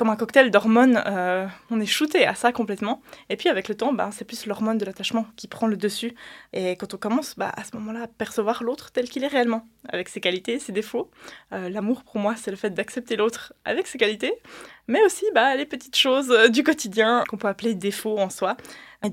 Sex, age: female, 20-39